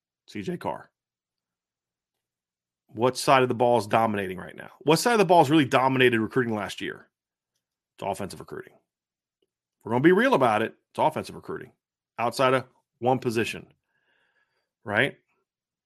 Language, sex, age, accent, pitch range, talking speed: English, male, 30-49, American, 105-140 Hz, 155 wpm